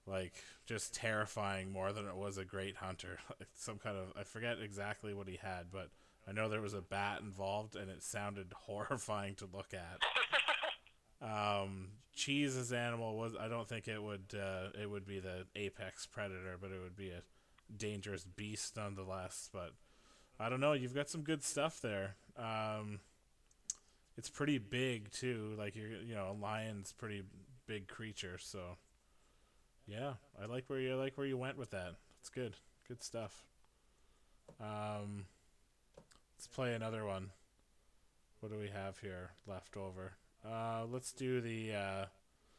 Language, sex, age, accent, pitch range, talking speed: English, male, 20-39, American, 95-115 Hz, 165 wpm